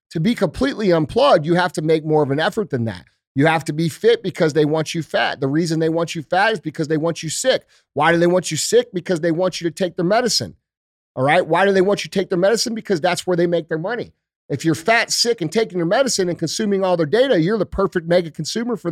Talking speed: 275 wpm